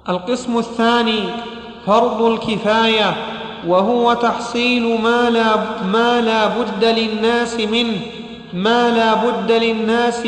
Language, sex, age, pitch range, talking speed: Arabic, male, 40-59, 220-240 Hz, 70 wpm